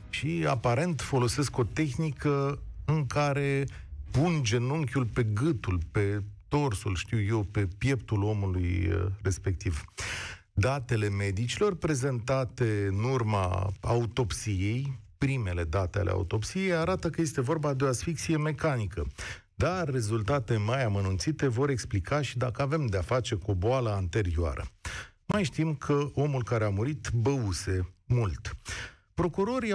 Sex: male